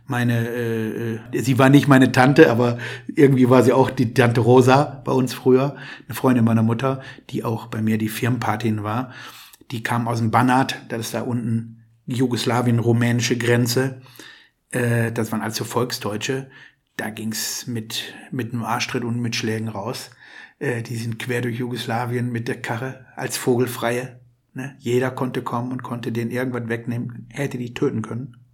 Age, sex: 60-79, male